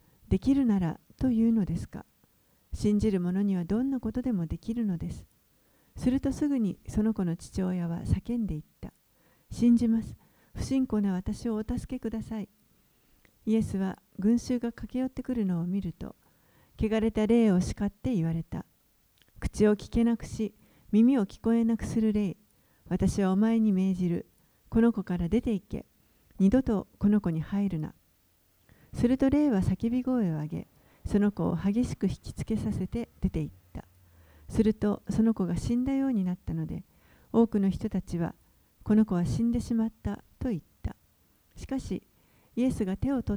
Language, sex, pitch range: Japanese, female, 180-230 Hz